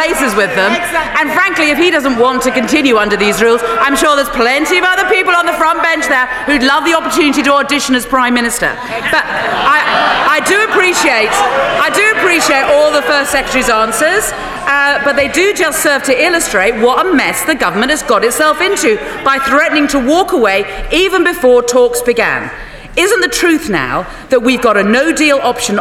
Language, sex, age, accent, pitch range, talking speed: English, female, 40-59, British, 250-330 Hz, 195 wpm